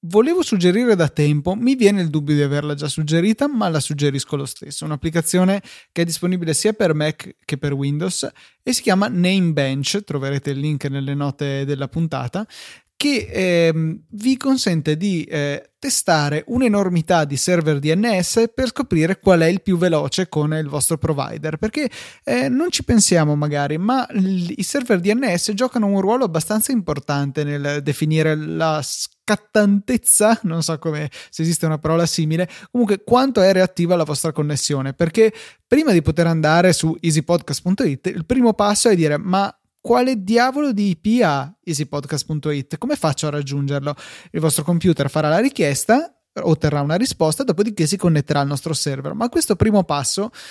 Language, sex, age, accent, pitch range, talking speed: Italian, male, 20-39, native, 150-210 Hz, 160 wpm